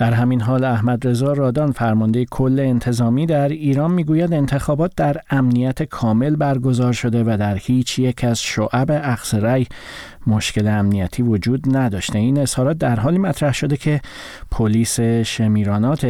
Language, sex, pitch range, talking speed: Persian, male, 110-130 Hz, 145 wpm